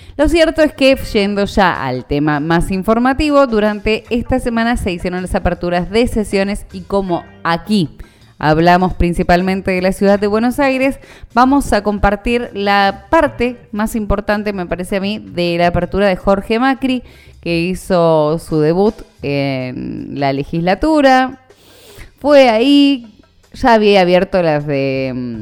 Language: Spanish